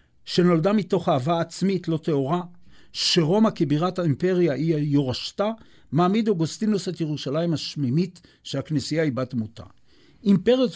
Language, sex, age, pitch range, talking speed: Hebrew, male, 60-79, 135-185 Hz, 115 wpm